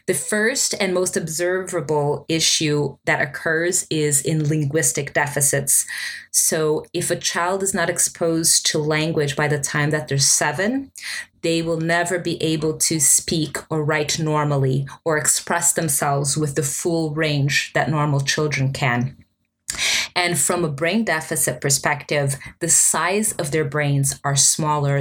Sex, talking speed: female, 145 wpm